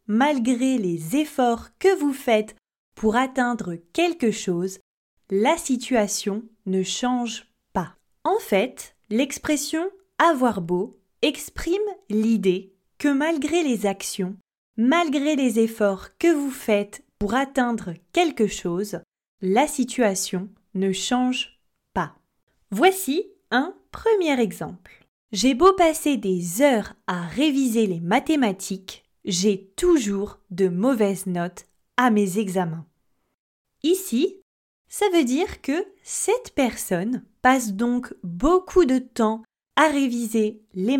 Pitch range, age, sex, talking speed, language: 200-295 Hz, 20-39, female, 115 wpm, French